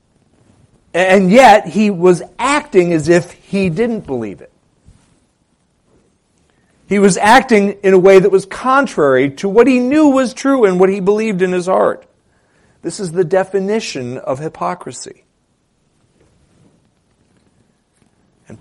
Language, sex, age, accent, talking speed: English, male, 40-59, American, 130 wpm